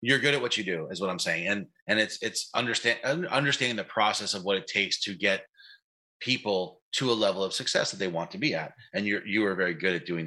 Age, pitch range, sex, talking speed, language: 30-49, 95-115 Hz, male, 255 wpm, English